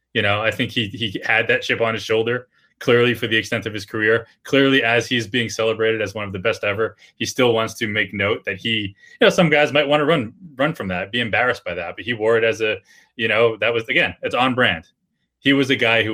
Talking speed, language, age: 270 wpm, English, 20-39